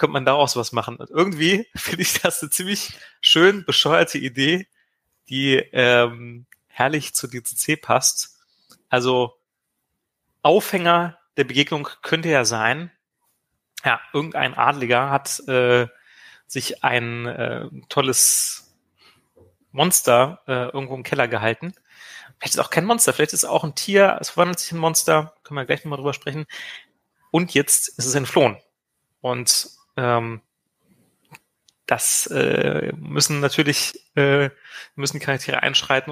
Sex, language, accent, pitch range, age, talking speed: male, German, German, 125-155 Hz, 30-49, 130 wpm